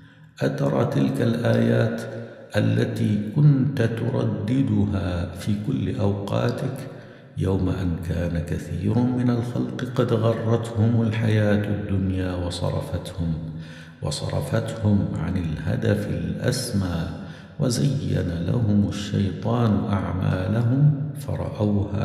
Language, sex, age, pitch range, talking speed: Arabic, male, 60-79, 85-115 Hz, 80 wpm